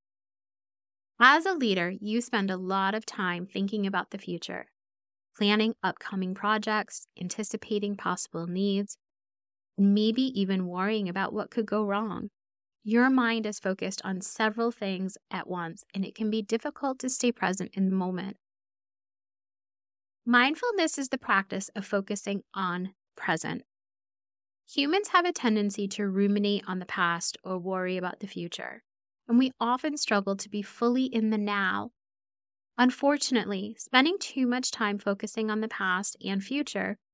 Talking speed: 145 wpm